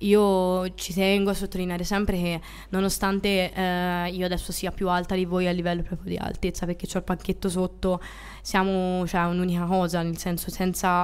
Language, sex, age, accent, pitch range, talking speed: Italian, female, 20-39, native, 175-195 Hz, 180 wpm